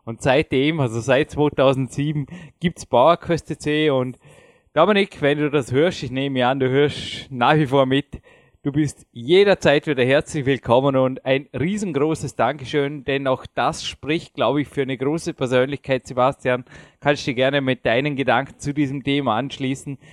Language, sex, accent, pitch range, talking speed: German, male, Austrian, 130-150 Hz, 165 wpm